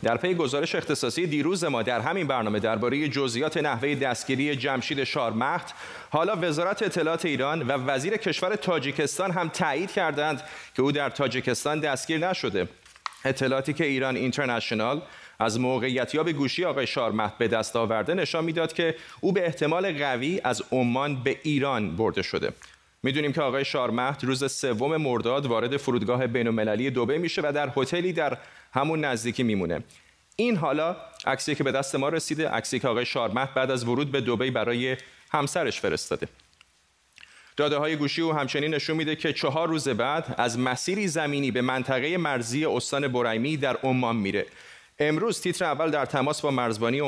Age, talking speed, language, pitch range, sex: 30-49, 160 wpm, Persian, 125-155 Hz, male